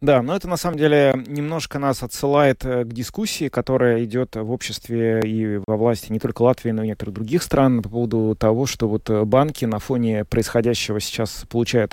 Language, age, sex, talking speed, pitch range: Russian, 30-49, male, 185 wpm, 110-130 Hz